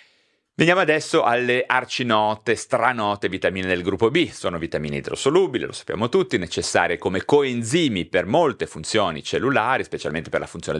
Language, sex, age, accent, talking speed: Italian, male, 30-49, native, 145 wpm